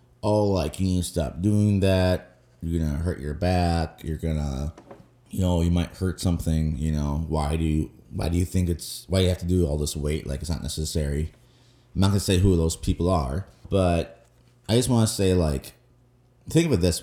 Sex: male